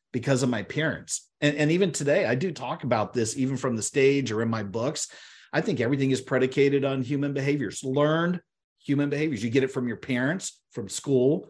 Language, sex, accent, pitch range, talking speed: English, male, American, 130-170 Hz, 210 wpm